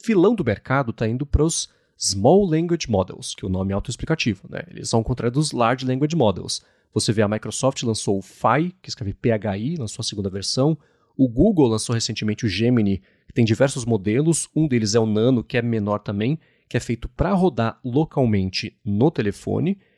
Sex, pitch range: male, 110-160 Hz